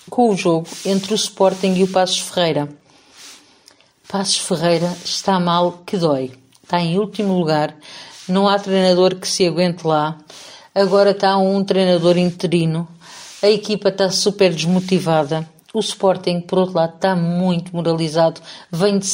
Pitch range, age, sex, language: 170-205 Hz, 50-69, female, Portuguese